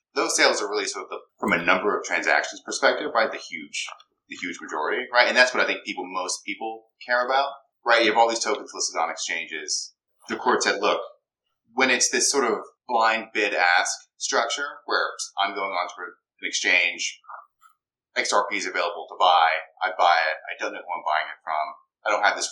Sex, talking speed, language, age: male, 210 wpm, English, 30-49